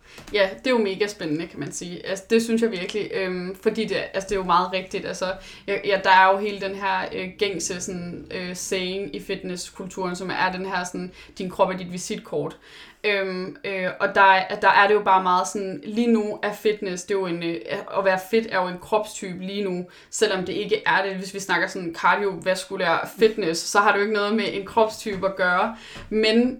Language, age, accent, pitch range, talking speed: Danish, 20-39, native, 185-210 Hz, 225 wpm